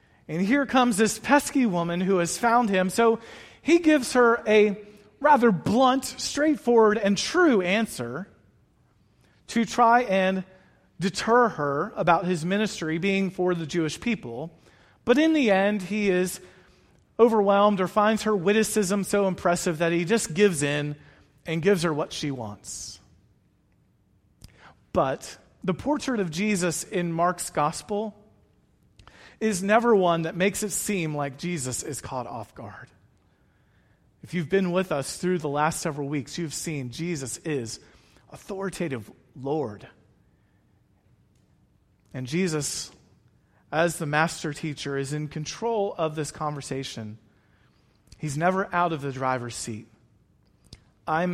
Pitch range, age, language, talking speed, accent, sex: 145-205 Hz, 40-59, English, 135 wpm, American, male